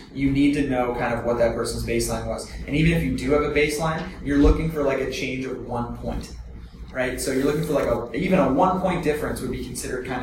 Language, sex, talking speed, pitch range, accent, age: English, male, 260 wpm, 120-145 Hz, American, 20-39